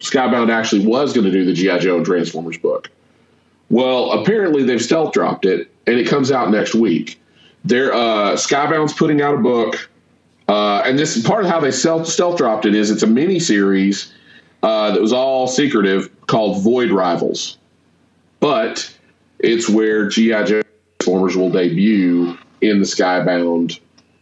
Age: 40-59